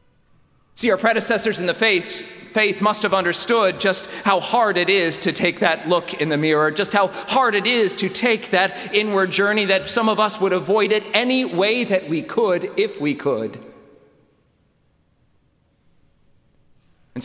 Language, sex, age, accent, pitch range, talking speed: English, male, 40-59, American, 160-200 Hz, 165 wpm